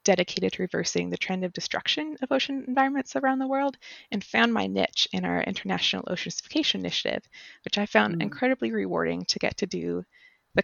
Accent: American